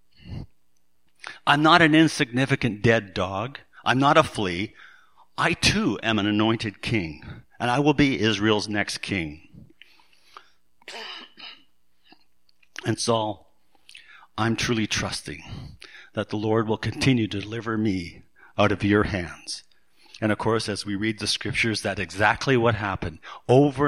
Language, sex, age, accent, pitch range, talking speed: English, male, 50-69, American, 95-125 Hz, 135 wpm